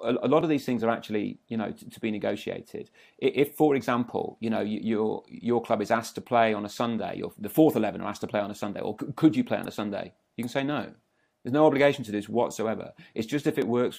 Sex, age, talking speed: male, 30-49, 255 wpm